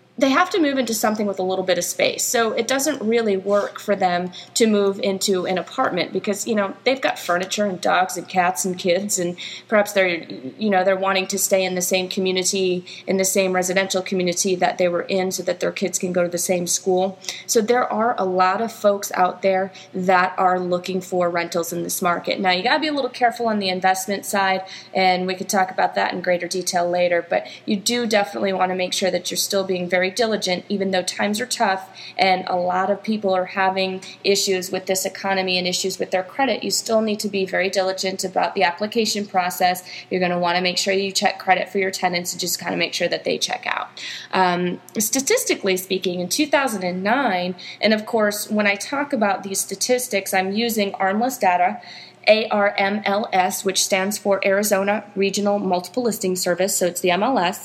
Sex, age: female, 30-49